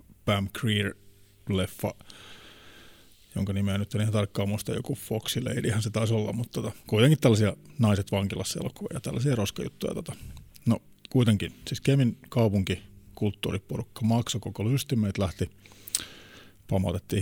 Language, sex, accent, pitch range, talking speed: Finnish, male, native, 100-115 Hz, 130 wpm